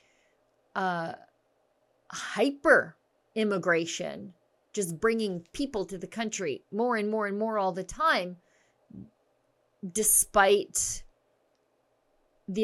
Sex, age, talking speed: female, 30-49, 90 wpm